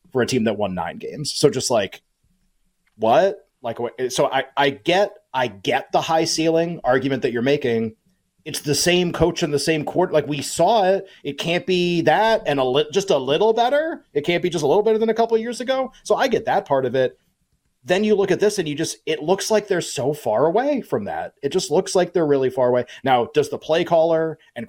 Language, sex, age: English, male, 30-49